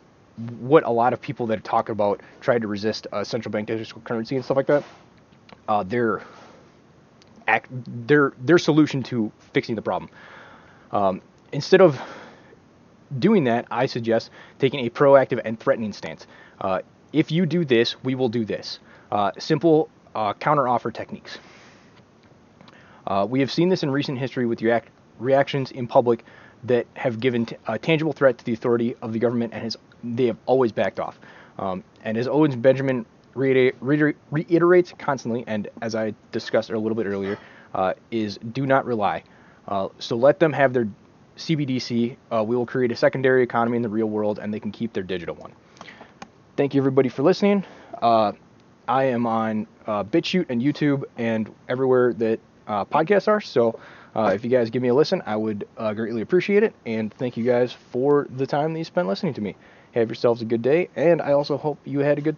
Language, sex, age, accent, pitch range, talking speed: English, male, 20-39, American, 115-145 Hz, 190 wpm